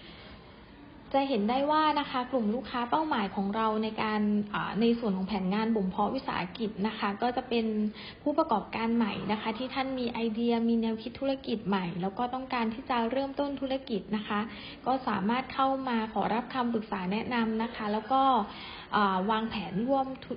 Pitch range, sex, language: 215-255 Hz, female, English